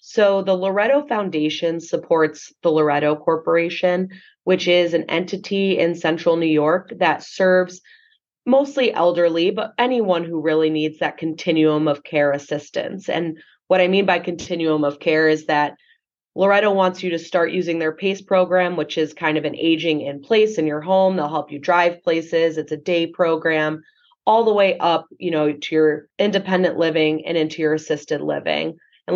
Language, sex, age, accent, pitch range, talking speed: English, female, 30-49, American, 155-185 Hz, 175 wpm